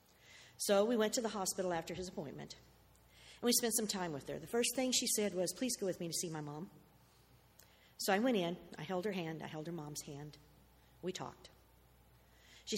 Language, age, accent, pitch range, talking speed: English, 50-69, American, 155-210 Hz, 215 wpm